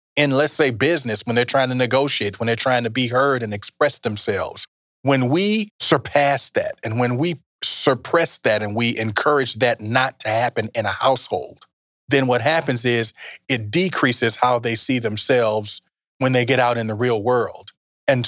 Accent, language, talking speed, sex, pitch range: American, English, 185 wpm, male, 115-140 Hz